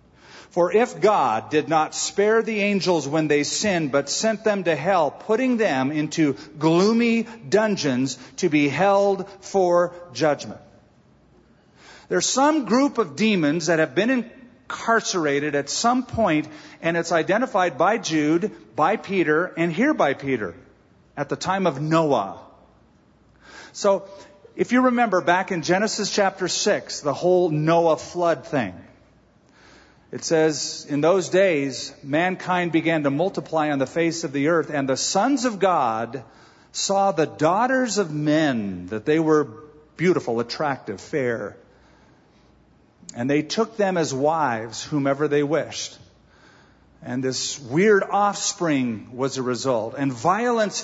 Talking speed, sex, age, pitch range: 140 wpm, male, 40-59, 145-200 Hz